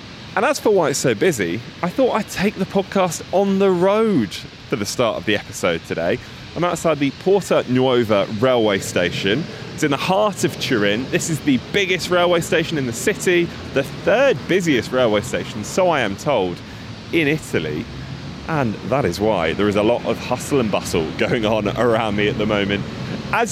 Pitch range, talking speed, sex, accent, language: 115-175 Hz, 195 wpm, male, British, English